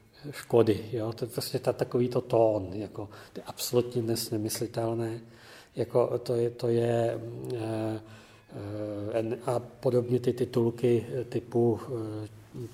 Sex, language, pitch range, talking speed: male, Czech, 110-125 Hz, 120 wpm